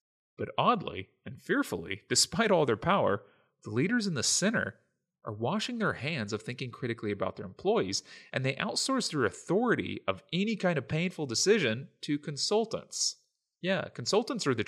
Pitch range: 105-150 Hz